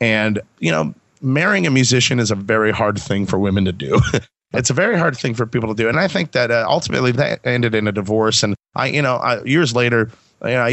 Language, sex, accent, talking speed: English, male, American, 235 wpm